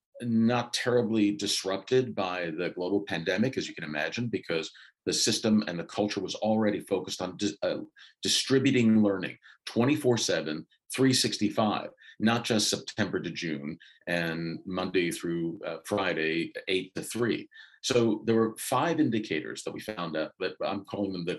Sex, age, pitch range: male, 50-69, 100-125 Hz